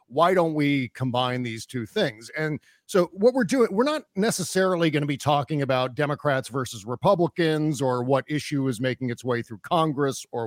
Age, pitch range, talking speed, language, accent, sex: 40-59, 125-155 Hz, 190 wpm, English, American, male